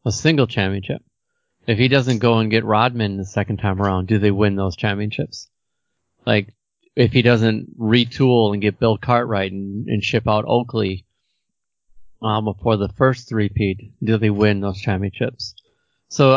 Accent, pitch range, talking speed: American, 100-120 Hz, 160 wpm